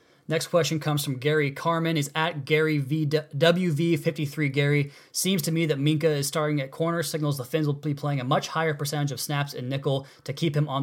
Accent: American